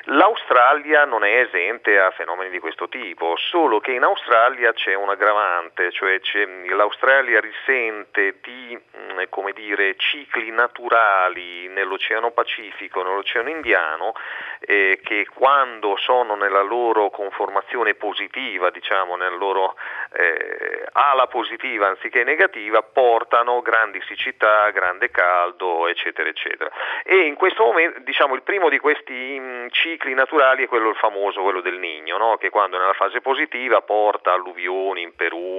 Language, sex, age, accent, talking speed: Italian, male, 40-59, native, 140 wpm